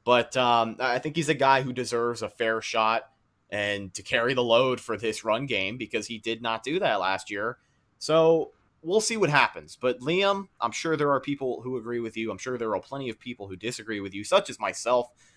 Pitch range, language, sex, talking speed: 110-140 Hz, English, male, 230 wpm